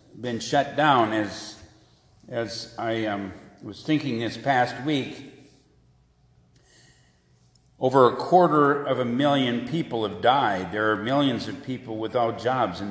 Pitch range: 100-125 Hz